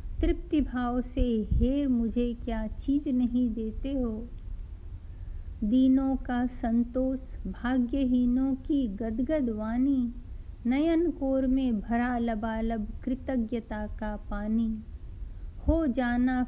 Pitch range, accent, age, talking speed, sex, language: 215-260 Hz, native, 50-69, 100 wpm, female, Hindi